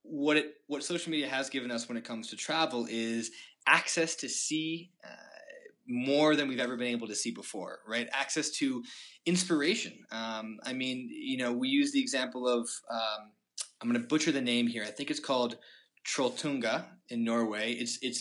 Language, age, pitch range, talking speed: English, 20-39, 120-180 Hz, 190 wpm